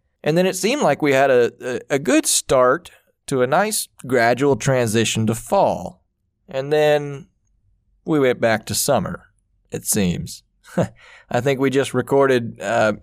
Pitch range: 110-135 Hz